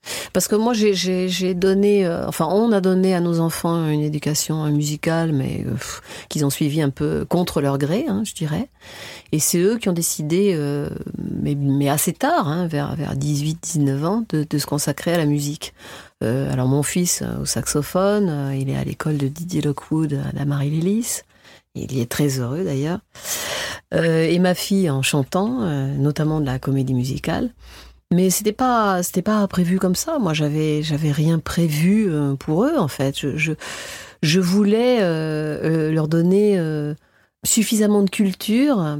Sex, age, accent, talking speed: female, 40-59, French, 180 wpm